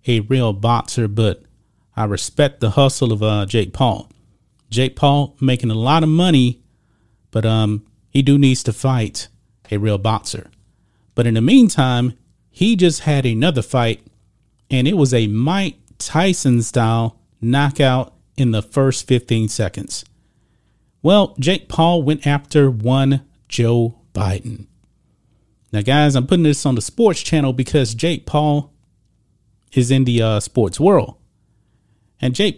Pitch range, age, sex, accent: 110-145 Hz, 40-59, male, American